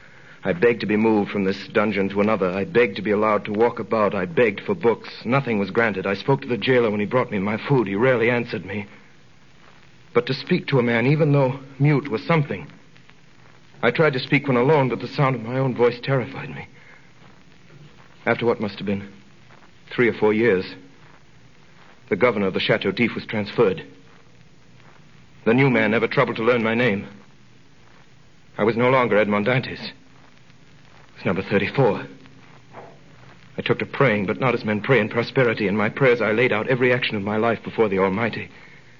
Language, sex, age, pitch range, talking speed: English, male, 60-79, 105-135 Hz, 195 wpm